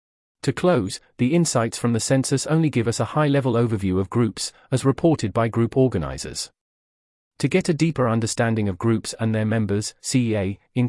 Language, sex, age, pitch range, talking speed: English, male, 40-59, 105-140 Hz, 180 wpm